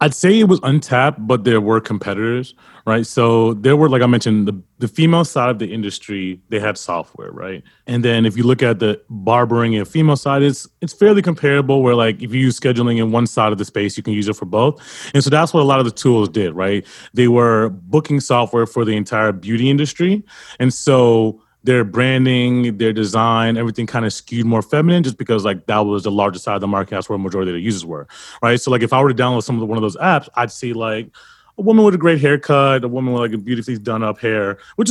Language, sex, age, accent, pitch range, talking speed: English, male, 30-49, American, 110-135 Hz, 250 wpm